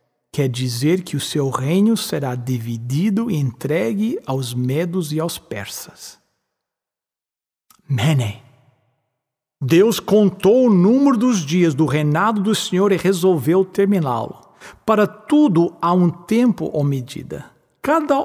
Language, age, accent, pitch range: English, 60-79, Brazilian, 135-210 Hz